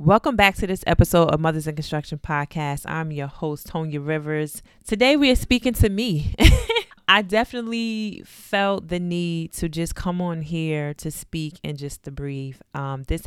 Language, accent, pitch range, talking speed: English, American, 140-170 Hz, 175 wpm